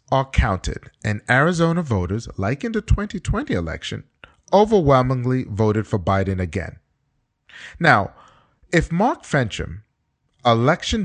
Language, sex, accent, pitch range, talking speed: English, male, American, 95-140 Hz, 110 wpm